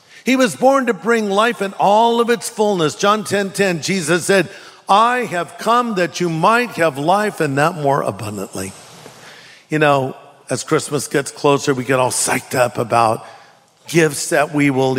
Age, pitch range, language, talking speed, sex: 50-69, 140-175 Hz, English, 175 wpm, male